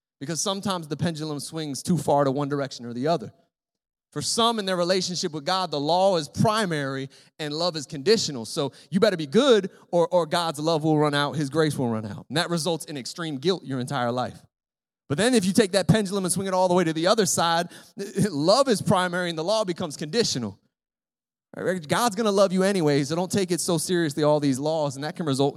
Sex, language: male, English